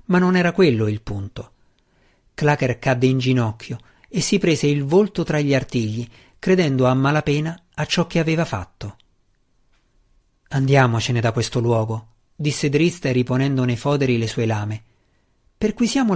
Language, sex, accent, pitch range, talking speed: Italian, male, native, 115-155 Hz, 145 wpm